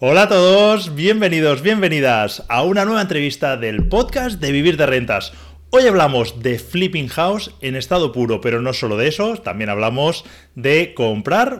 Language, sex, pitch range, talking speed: Spanish, male, 120-195 Hz, 165 wpm